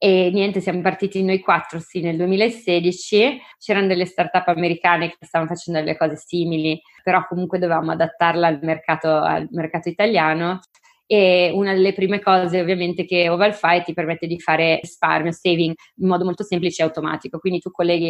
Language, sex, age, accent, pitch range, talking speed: Italian, female, 30-49, native, 170-190 Hz, 170 wpm